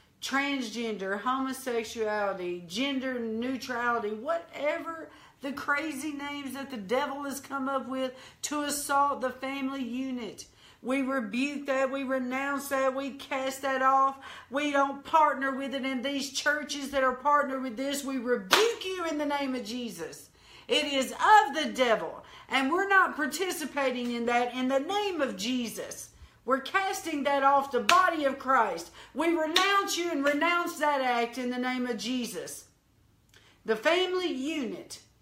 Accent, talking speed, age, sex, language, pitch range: American, 155 wpm, 50-69, female, English, 250-290 Hz